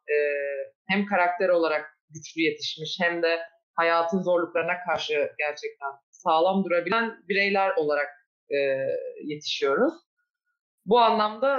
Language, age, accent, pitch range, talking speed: Turkish, 30-49, native, 160-205 Hz, 95 wpm